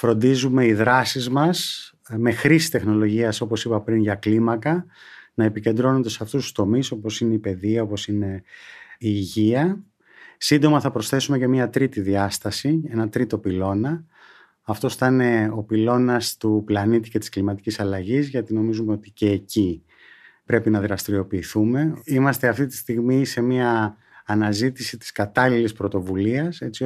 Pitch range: 105-135 Hz